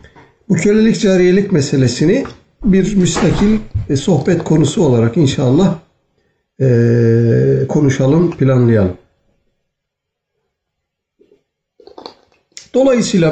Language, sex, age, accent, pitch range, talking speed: Turkish, male, 60-79, native, 130-180 Hz, 60 wpm